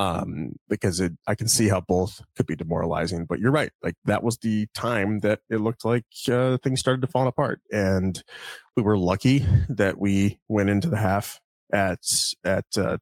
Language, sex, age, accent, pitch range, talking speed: English, male, 20-39, American, 95-115 Hz, 195 wpm